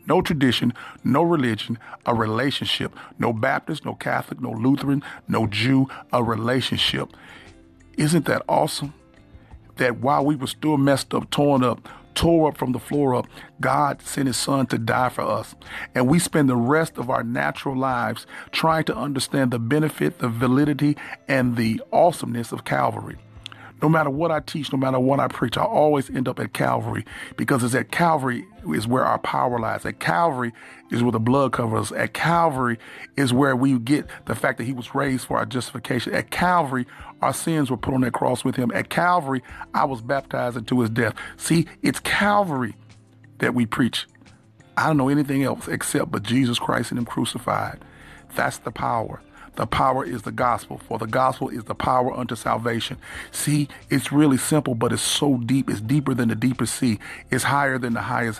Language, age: English, 40-59